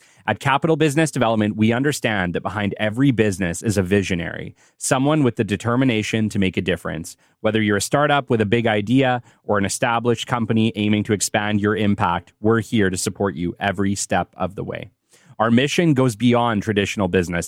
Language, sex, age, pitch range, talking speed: English, male, 30-49, 100-120 Hz, 185 wpm